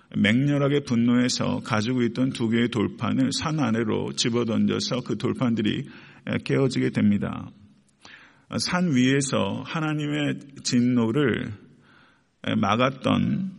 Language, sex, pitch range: Korean, male, 115-140 Hz